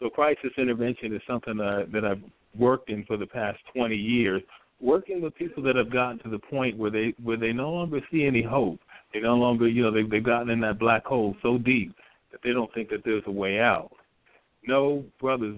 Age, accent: 50-69, American